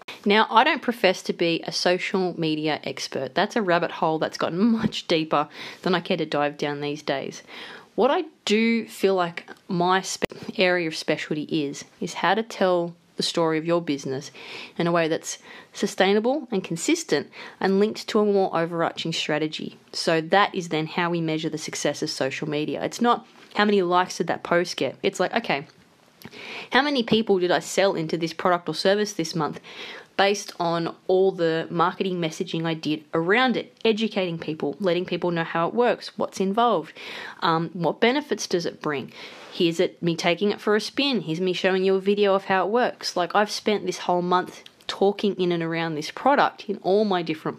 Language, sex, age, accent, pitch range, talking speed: English, female, 30-49, Australian, 165-205 Hz, 195 wpm